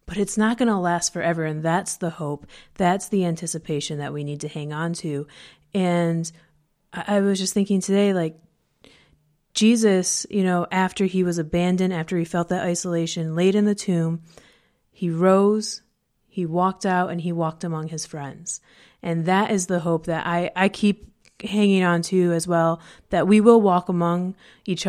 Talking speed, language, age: 185 wpm, English, 30-49